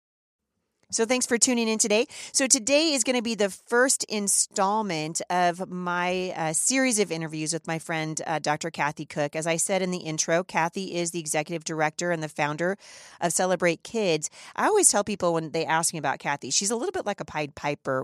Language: English